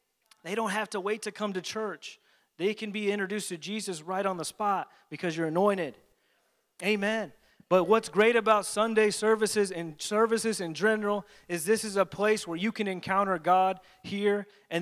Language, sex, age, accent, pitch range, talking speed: English, male, 30-49, American, 190-225 Hz, 180 wpm